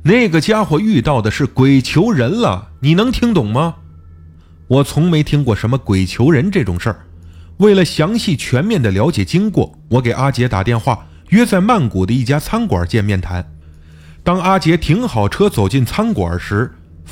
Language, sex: Chinese, male